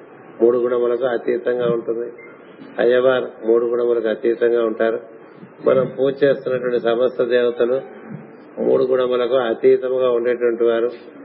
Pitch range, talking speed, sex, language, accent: 115-130 Hz, 100 wpm, male, Telugu, native